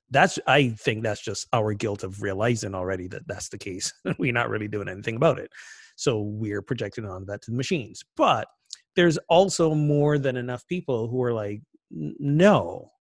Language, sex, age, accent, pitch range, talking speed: English, male, 30-49, American, 115-140 Hz, 185 wpm